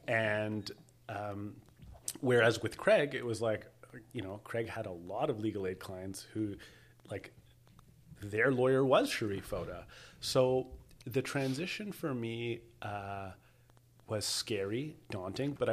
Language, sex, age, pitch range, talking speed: English, male, 30-49, 100-120 Hz, 135 wpm